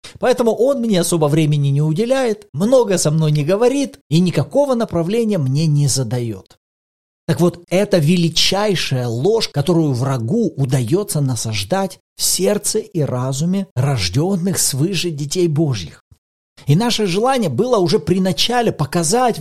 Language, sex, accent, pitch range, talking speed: Russian, male, native, 145-210 Hz, 135 wpm